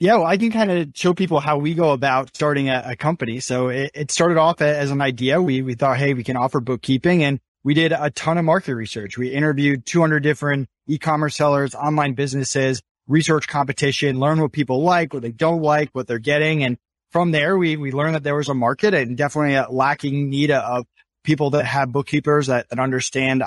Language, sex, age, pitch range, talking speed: English, male, 20-39, 135-155 Hz, 215 wpm